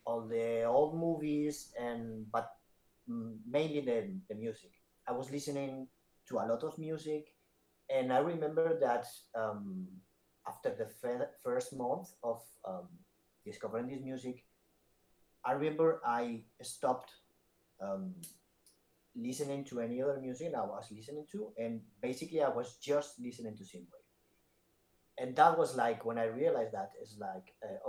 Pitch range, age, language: 110-150 Hz, 30-49, English